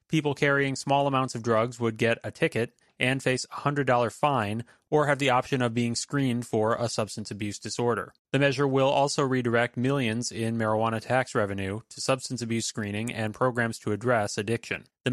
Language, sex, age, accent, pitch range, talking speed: English, male, 30-49, American, 110-135 Hz, 185 wpm